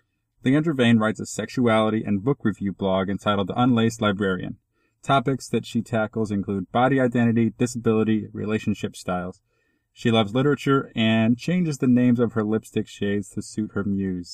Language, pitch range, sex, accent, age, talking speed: English, 105-125 Hz, male, American, 30-49, 160 wpm